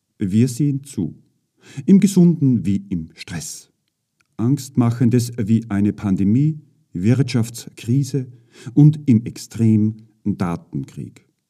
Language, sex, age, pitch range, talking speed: German, male, 50-69, 100-145 Hz, 90 wpm